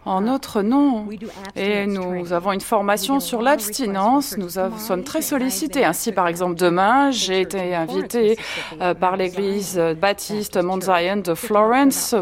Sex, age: female, 30-49